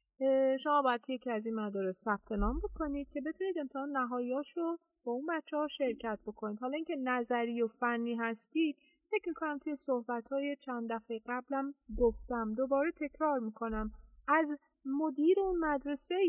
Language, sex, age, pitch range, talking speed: Persian, female, 30-49, 215-290 Hz, 145 wpm